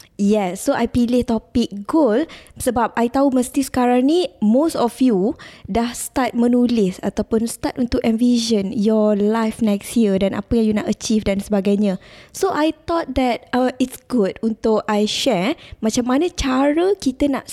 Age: 20-39